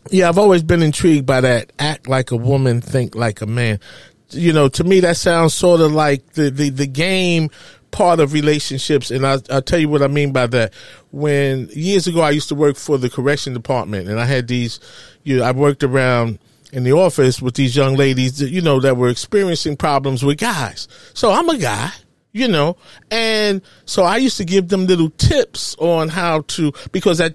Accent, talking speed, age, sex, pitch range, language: American, 210 wpm, 40-59, male, 135-175 Hz, English